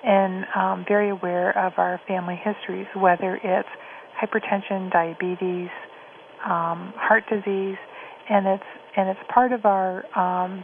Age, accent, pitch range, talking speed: 40-59, American, 185-210 Hz, 130 wpm